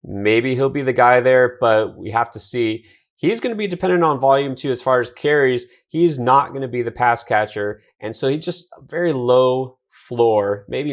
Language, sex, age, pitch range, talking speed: English, male, 30-49, 110-135 Hz, 220 wpm